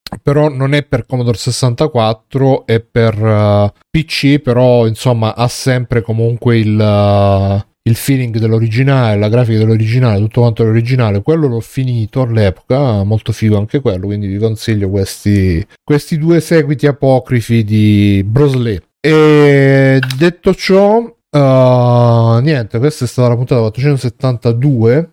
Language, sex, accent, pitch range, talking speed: Italian, male, native, 115-140 Hz, 135 wpm